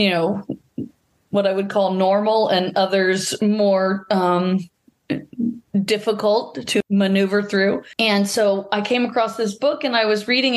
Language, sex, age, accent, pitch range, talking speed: English, female, 40-59, American, 190-215 Hz, 150 wpm